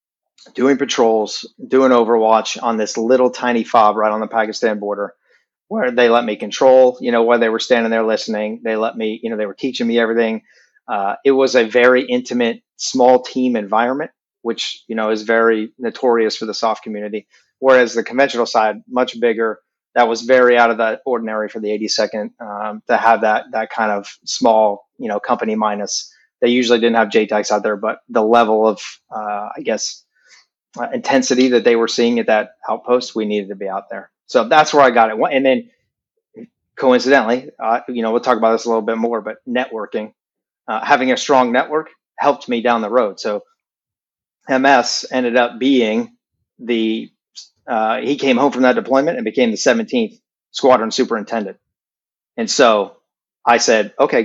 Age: 30-49